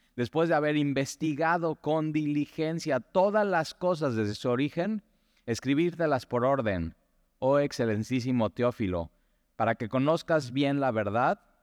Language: Spanish